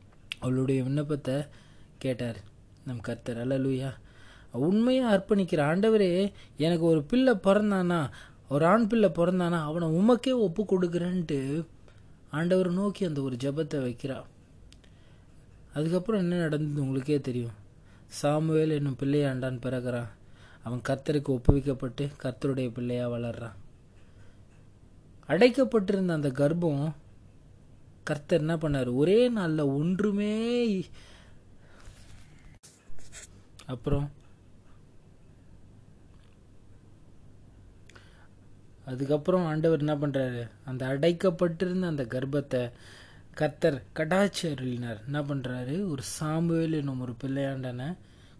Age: 20-39